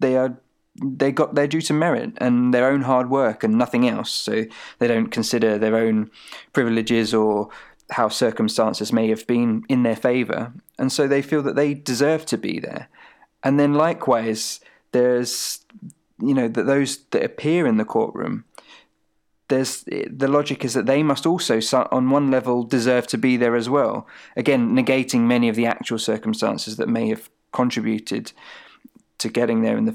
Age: 20-39